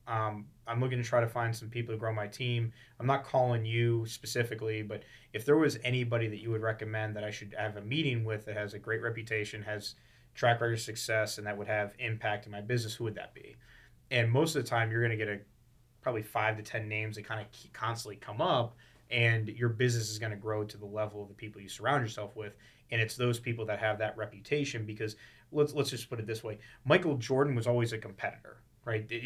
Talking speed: 235 wpm